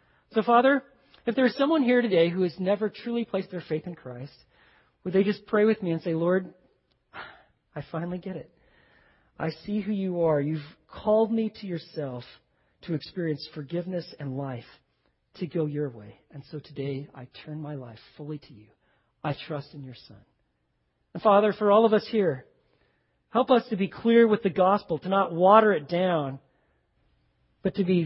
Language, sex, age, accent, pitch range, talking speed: English, male, 40-59, American, 135-190 Hz, 185 wpm